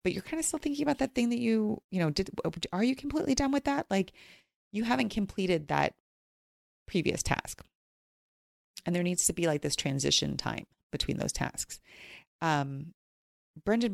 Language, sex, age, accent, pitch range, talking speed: English, female, 30-49, American, 150-200 Hz, 175 wpm